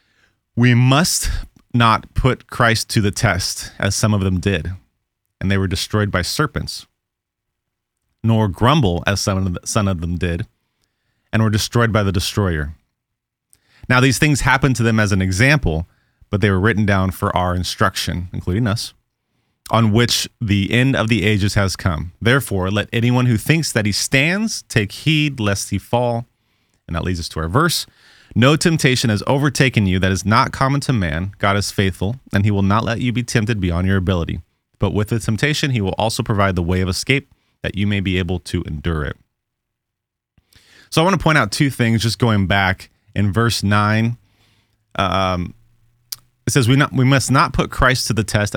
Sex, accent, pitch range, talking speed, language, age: male, American, 95-120 Hz, 185 wpm, English, 30-49